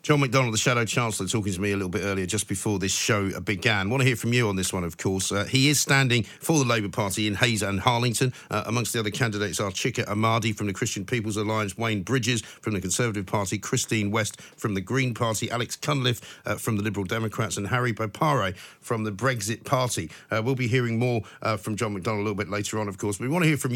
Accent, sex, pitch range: British, male, 105-130 Hz